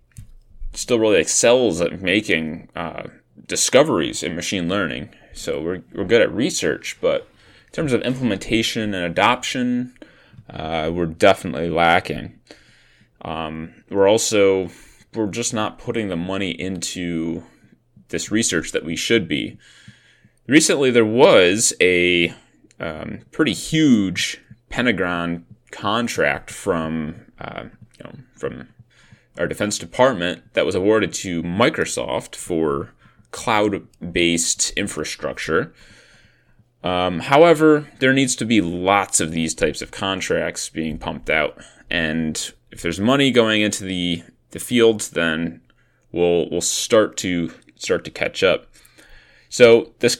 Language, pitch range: English, 85-115 Hz